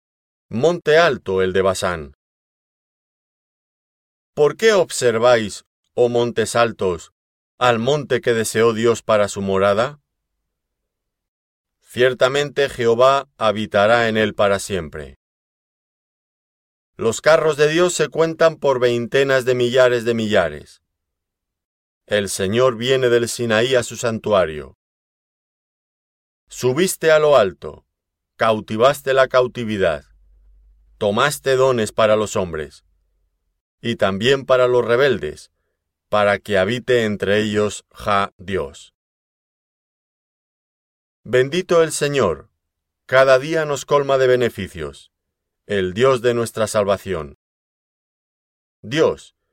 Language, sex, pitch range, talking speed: Spanish, male, 85-130 Hz, 105 wpm